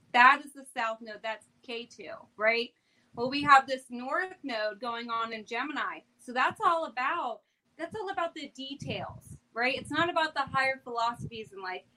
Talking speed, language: 170 wpm, English